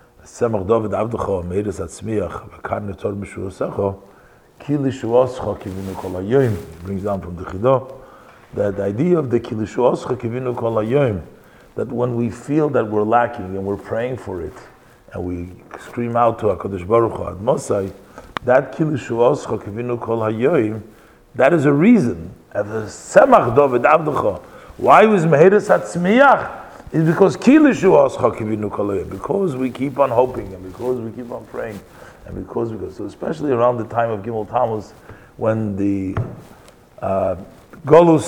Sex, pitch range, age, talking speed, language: male, 105-130 Hz, 50-69, 150 wpm, English